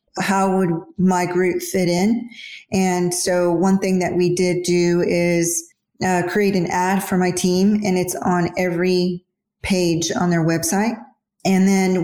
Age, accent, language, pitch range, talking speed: 40-59, American, English, 170-190 Hz, 160 wpm